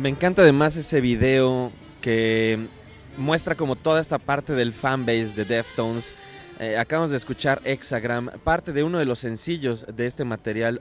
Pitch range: 125-165 Hz